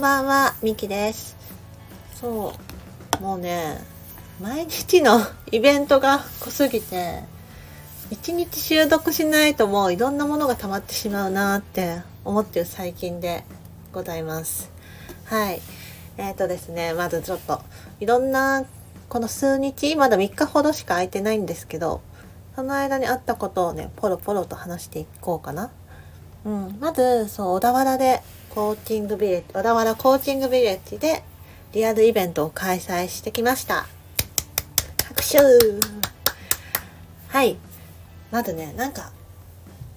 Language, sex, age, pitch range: Japanese, female, 40-59, 160-265 Hz